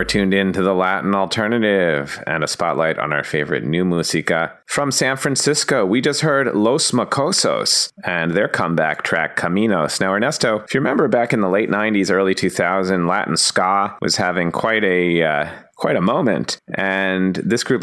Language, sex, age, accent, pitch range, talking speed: English, male, 30-49, American, 90-105 Hz, 175 wpm